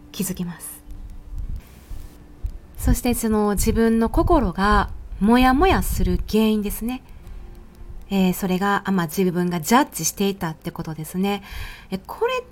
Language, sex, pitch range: Japanese, female, 170-265 Hz